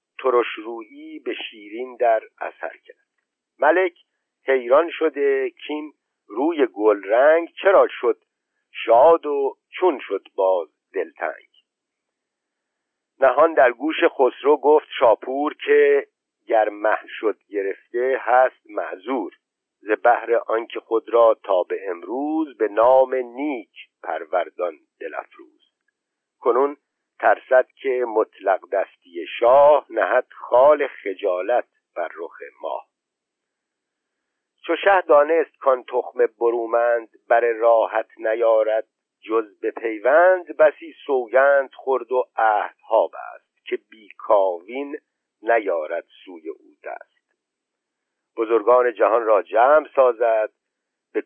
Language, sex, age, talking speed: Persian, male, 50-69, 105 wpm